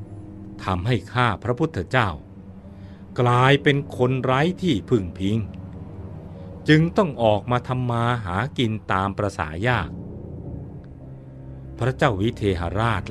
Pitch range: 90-125 Hz